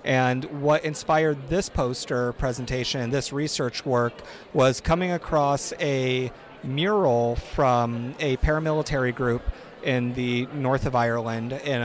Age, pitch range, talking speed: 30-49, 125-150 Hz, 120 wpm